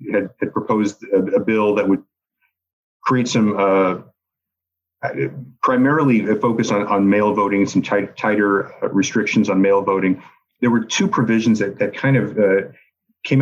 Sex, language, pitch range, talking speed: male, English, 95-115 Hz, 155 wpm